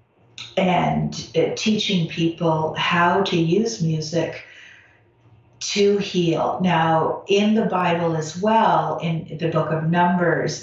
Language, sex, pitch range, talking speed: English, female, 160-190 Hz, 120 wpm